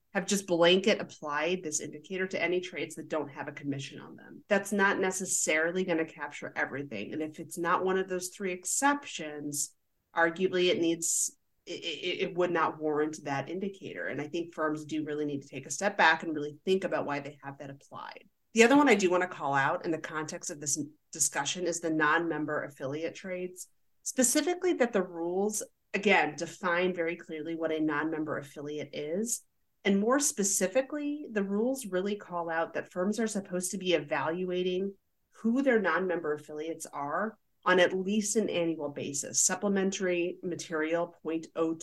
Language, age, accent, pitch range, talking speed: English, 30-49, American, 150-190 Hz, 180 wpm